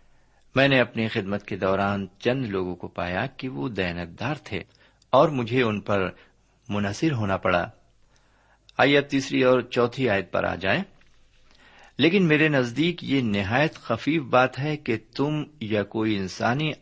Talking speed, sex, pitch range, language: 150 wpm, male, 100-135 Hz, Urdu